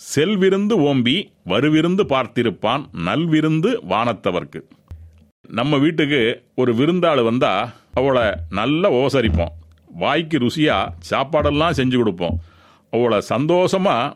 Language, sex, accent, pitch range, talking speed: Tamil, male, native, 115-155 Hz, 90 wpm